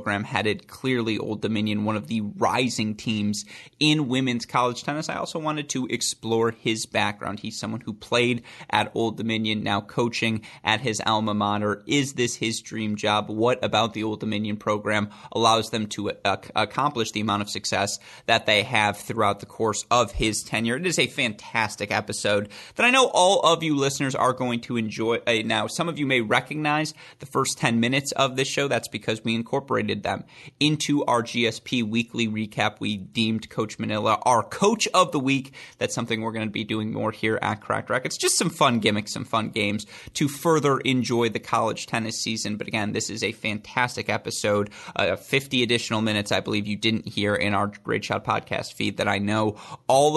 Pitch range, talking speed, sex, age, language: 105-125 Hz, 195 wpm, male, 30-49, English